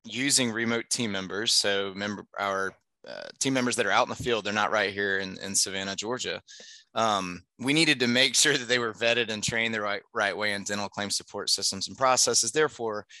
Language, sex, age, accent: English, male, 20-39, American